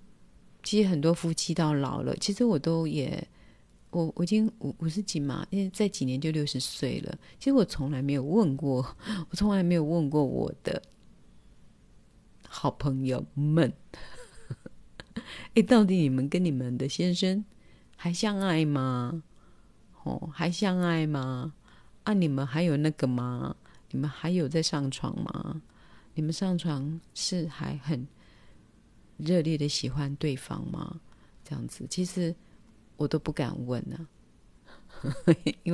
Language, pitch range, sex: Chinese, 135-175 Hz, female